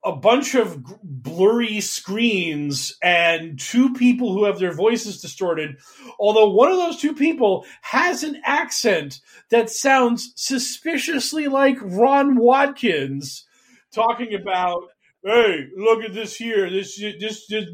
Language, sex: English, male